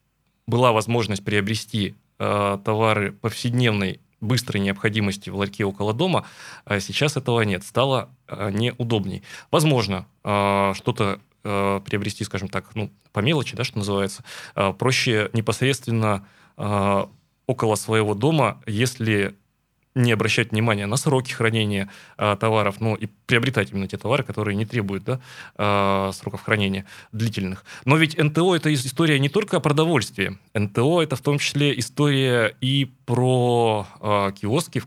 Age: 20-39